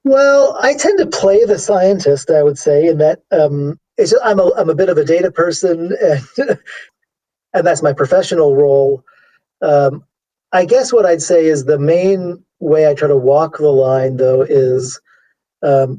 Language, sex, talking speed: English, male, 185 wpm